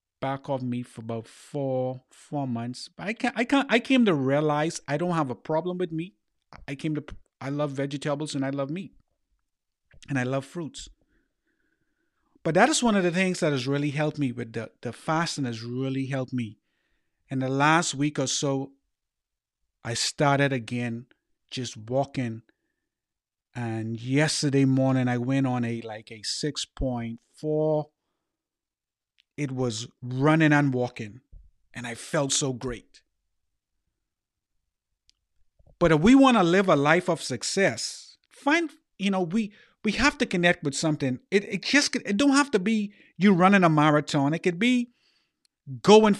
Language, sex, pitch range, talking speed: English, male, 125-185 Hz, 165 wpm